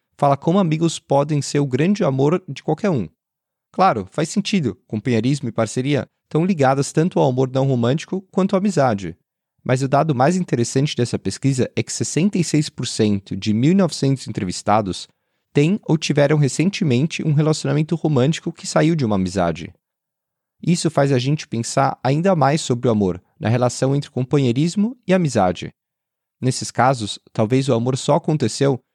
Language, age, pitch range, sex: Portuguese, 30-49, 120-165 Hz, male